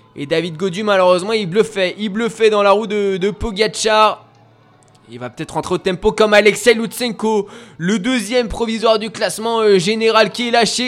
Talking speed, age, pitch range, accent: 180 wpm, 20-39, 185-225 Hz, French